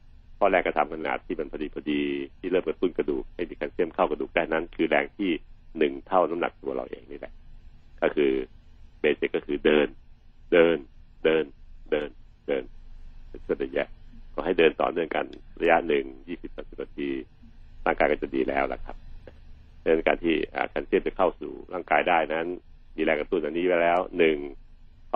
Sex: male